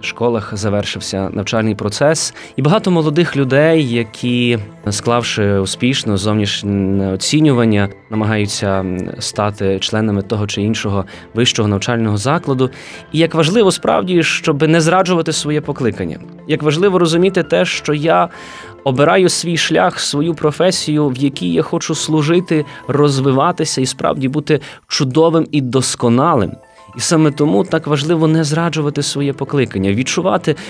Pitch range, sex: 115-160 Hz, male